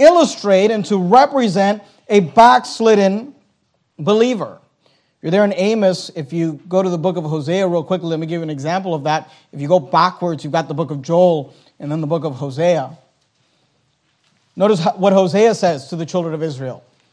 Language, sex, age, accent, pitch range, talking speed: English, male, 40-59, American, 175-245 Hz, 195 wpm